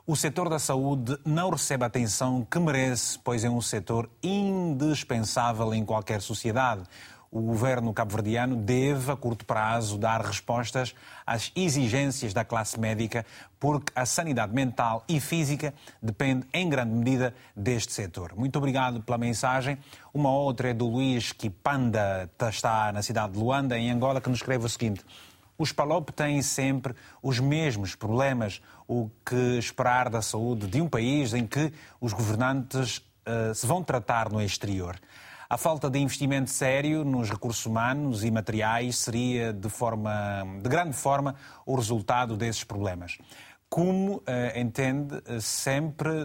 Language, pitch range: Portuguese, 115-135 Hz